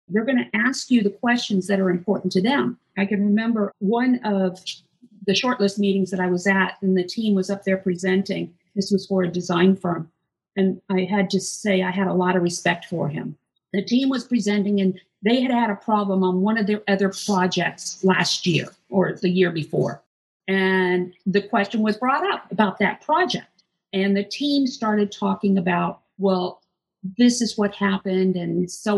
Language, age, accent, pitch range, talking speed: English, 50-69, American, 185-215 Hz, 195 wpm